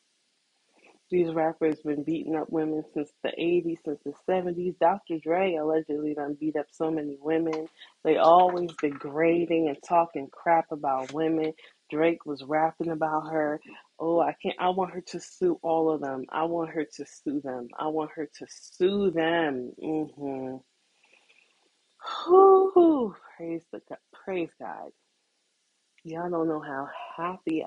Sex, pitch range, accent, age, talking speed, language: female, 145-170 Hz, American, 20-39, 150 wpm, English